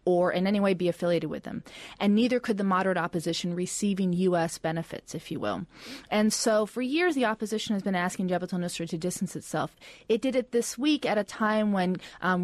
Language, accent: English, American